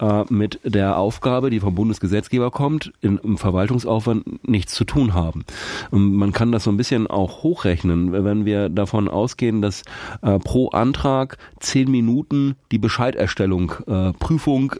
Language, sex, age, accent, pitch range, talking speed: German, male, 40-59, German, 100-120 Hz, 135 wpm